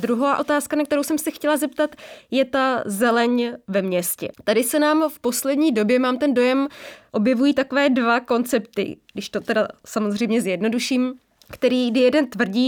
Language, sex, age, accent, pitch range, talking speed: English, female, 20-39, Czech, 215-255 Hz, 165 wpm